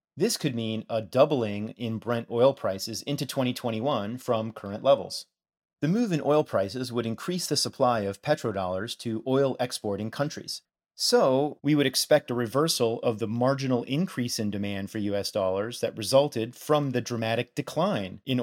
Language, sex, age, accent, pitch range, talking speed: English, male, 30-49, American, 115-150 Hz, 165 wpm